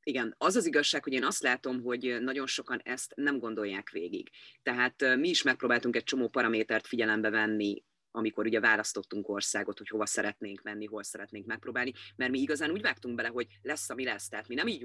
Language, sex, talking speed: Hungarian, female, 200 wpm